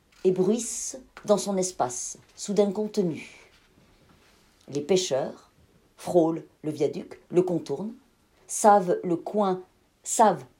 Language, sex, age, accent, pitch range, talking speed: French, female, 40-59, French, 165-210 Hz, 100 wpm